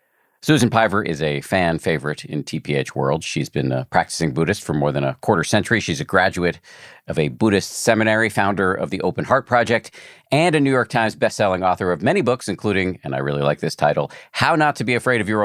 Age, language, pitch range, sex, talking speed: 50-69, English, 80-120 Hz, male, 220 wpm